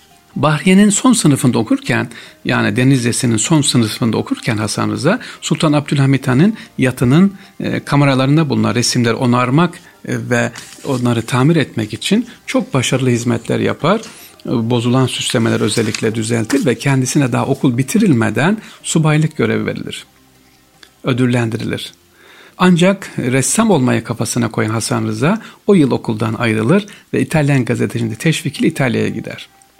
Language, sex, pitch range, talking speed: Turkish, male, 115-150 Hz, 115 wpm